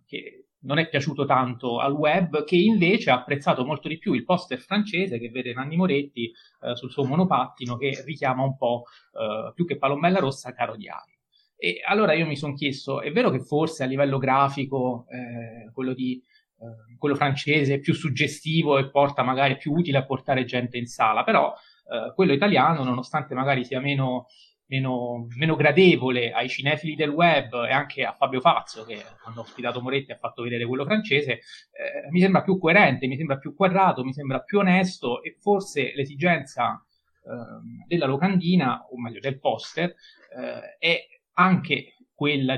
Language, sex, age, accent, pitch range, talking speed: Italian, male, 30-49, native, 130-170 Hz, 175 wpm